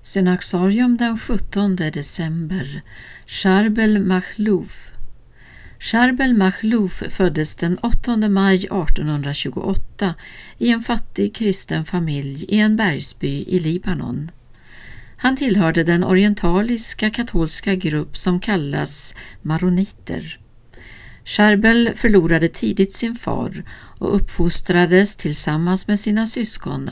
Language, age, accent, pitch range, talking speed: Swedish, 60-79, native, 155-210 Hz, 95 wpm